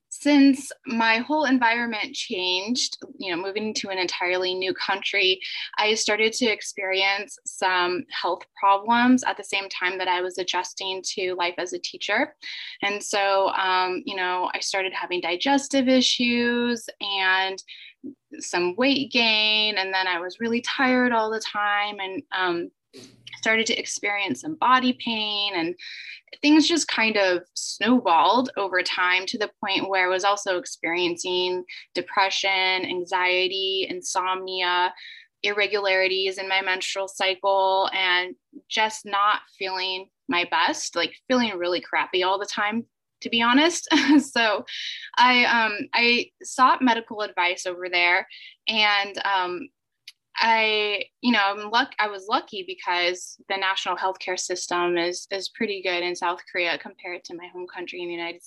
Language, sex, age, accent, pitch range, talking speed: English, female, 20-39, American, 180-235 Hz, 145 wpm